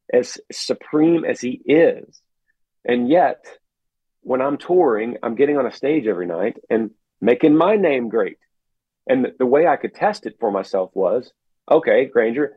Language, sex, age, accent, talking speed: English, male, 40-59, American, 160 wpm